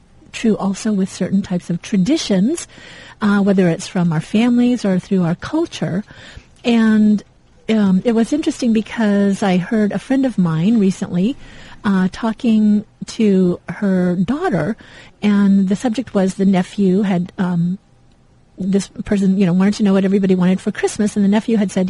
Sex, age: female, 40-59